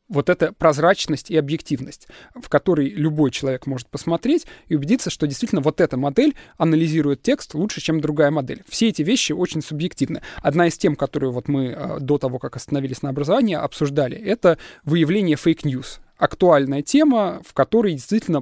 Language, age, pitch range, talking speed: Russian, 20-39, 145-185 Hz, 165 wpm